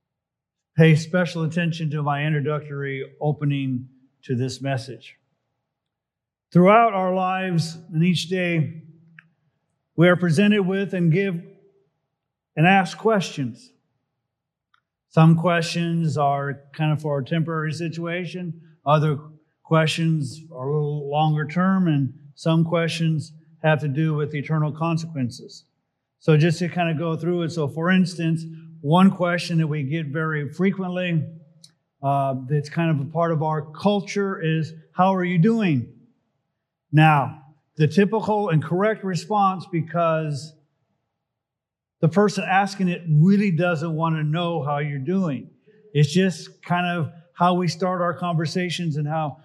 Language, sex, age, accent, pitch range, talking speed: English, male, 50-69, American, 150-180 Hz, 135 wpm